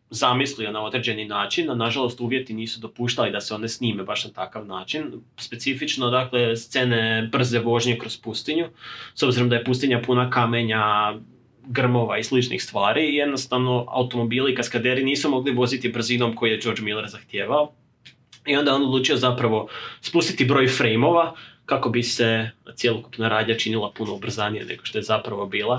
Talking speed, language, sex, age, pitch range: 160 wpm, Croatian, male, 20-39, 115-130 Hz